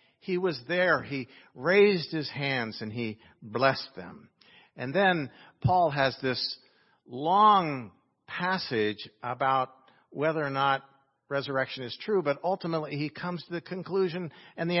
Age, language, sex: 50-69, English, male